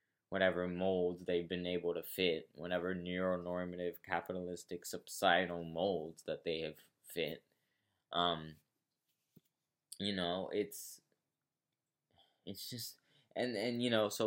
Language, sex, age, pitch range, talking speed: English, male, 20-39, 90-110 Hz, 115 wpm